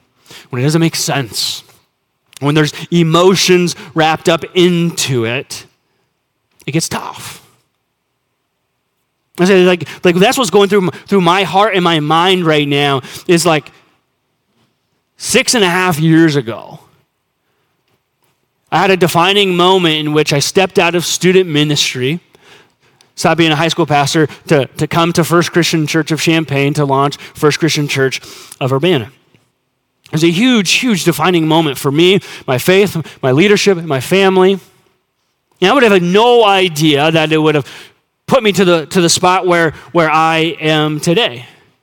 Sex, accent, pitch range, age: male, American, 145-185 Hz, 30-49